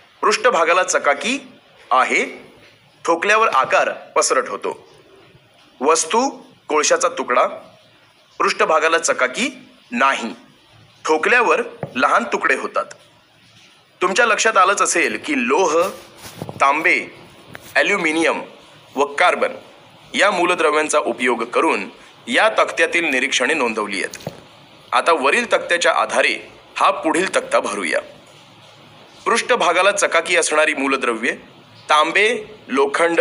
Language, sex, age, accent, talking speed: Marathi, male, 30-49, native, 90 wpm